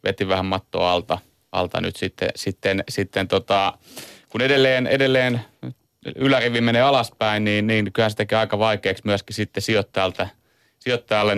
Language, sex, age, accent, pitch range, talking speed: Finnish, male, 30-49, native, 105-125 Hz, 135 wpm